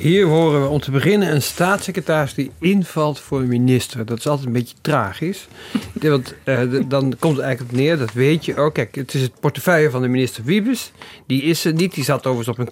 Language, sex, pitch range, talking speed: Dutch, male, 120-150 Hz, 235 wpm